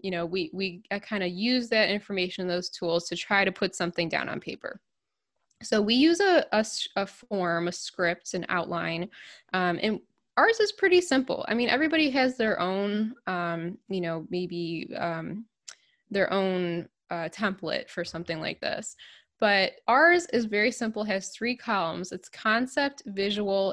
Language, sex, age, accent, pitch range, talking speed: English, female, 10-29, American, 180-220 Hz, 165 wpm